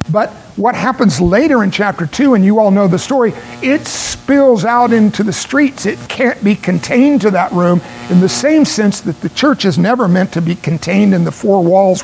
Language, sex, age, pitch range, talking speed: English, male, 60-79, 160-205 Hz, 215 wpm